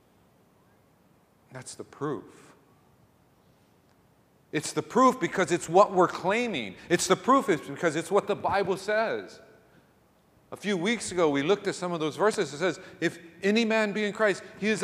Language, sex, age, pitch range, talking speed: English, male, 40-59, 170-220 Hz, 165 wpm